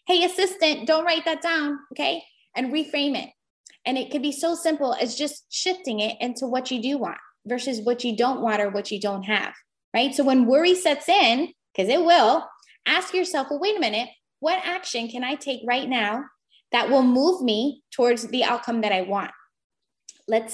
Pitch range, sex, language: 225-310 Hz, female, English